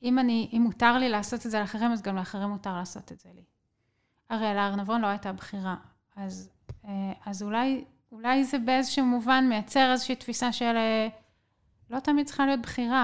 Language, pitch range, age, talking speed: Hebrew, 200-250 Hz, 30-49, 180 wpm